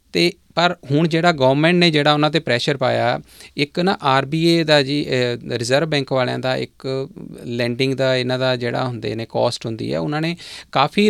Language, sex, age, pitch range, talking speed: Punjabi, male, 30-49, 125-150 Hz, 185 wpm